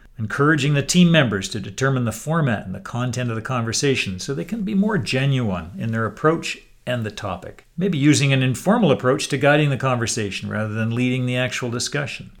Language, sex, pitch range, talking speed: English, male, 115-160 Hz, 200 wpm